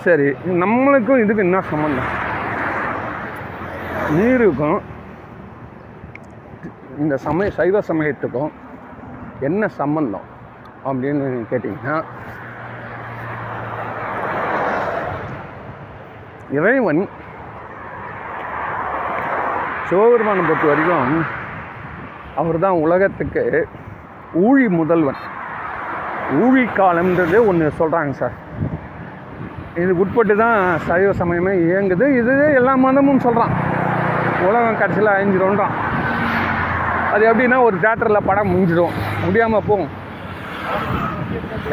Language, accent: Tamil, native